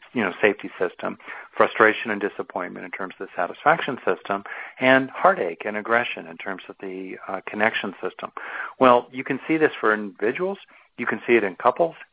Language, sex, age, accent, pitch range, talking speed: English, male, 50-69, American, 95-125 Hz, 185 wpm